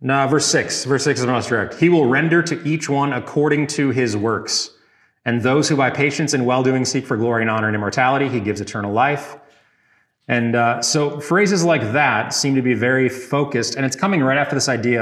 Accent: American